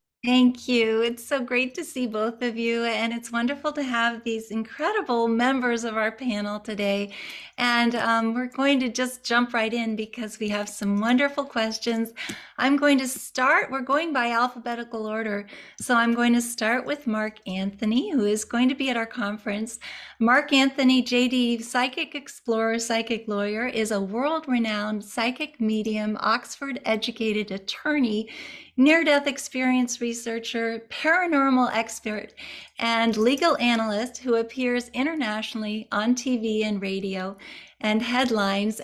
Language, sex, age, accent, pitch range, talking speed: English, female, 40-59, American, 215-255 Hz, 145 wpm